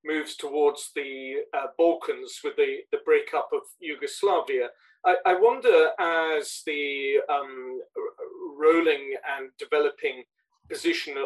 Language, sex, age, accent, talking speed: English, male, 40-59, British, 110 wpm